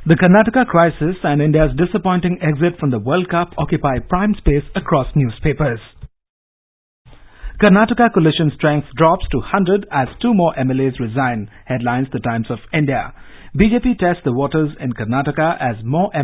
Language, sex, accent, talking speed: English, male, Indian, 150 wpm